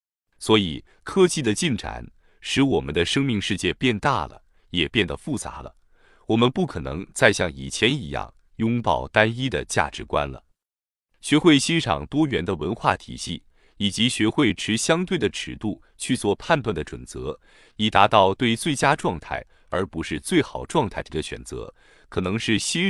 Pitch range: 95-140 Hz